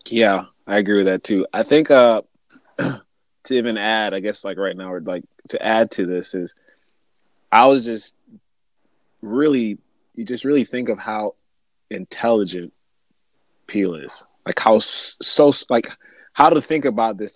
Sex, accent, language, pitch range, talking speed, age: male, American, English, 95-115 Hz, 160 wpm, 20-39